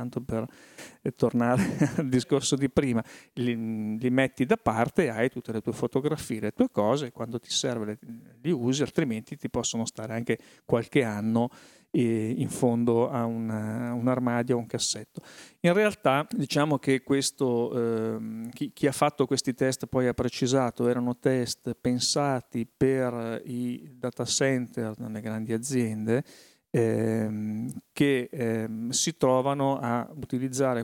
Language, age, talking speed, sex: Italian, 40-59, 150 wpm, male